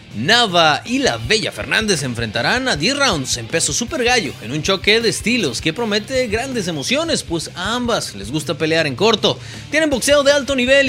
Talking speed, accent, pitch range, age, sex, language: 195 wpm, Mexican, 160-250 Hz, 30-49, male, Spanish